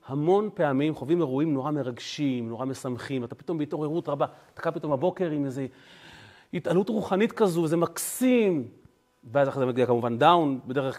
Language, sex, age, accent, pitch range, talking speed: Hebrew, male, 30-49, native, 140-220 Hz, 165 wpm